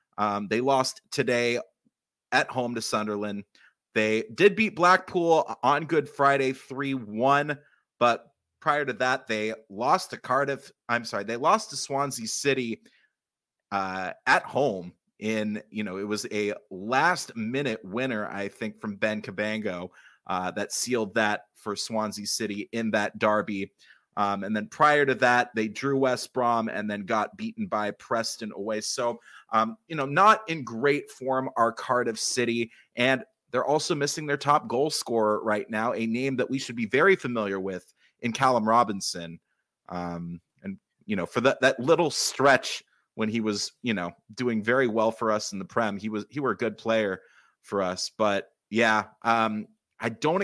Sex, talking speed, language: male, 170 wpm, English